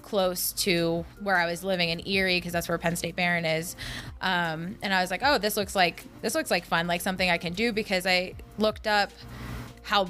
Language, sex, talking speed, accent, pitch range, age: English, female, 225 wpm, American, 170-200 Hz, 20-39